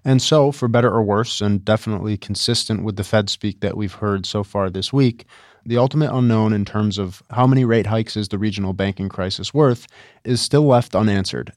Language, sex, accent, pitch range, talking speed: English, male, American, 105-125 Hz, 205 wpm